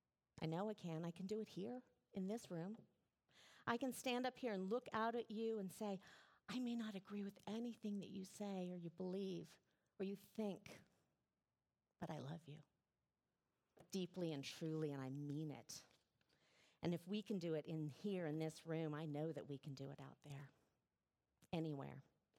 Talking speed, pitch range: 190 wpm, 145-200 Hz